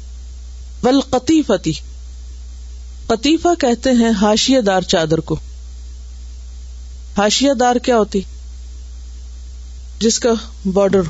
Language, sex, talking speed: Urdu, female, 85 wpm